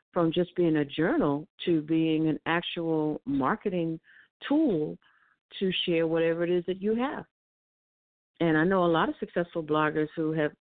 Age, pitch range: 40-59, 160-190 Hz